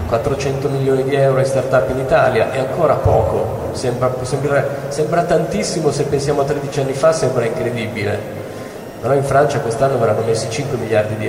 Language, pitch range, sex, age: Italian, 115-135 Hz, male, 30-49